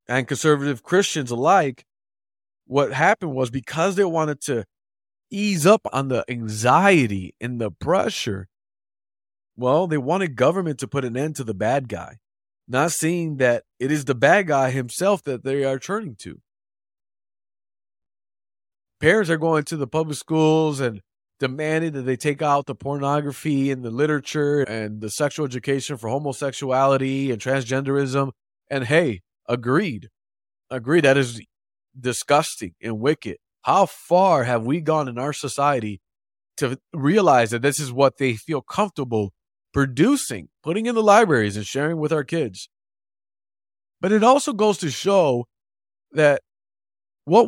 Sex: male